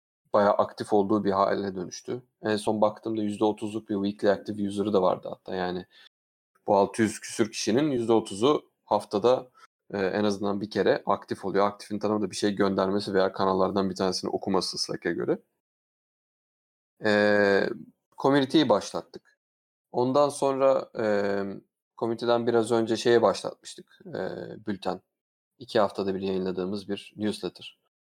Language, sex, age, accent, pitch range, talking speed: Turkish, male, 30-49, native, 95-115 Hz, 135 wpm